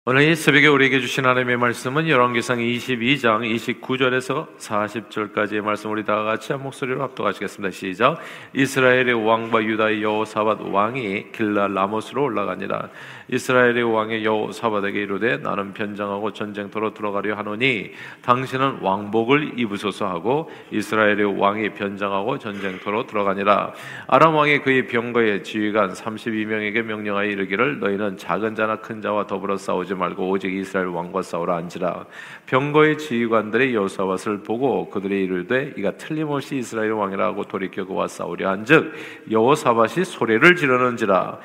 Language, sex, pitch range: Korean, male, 100-130 Hz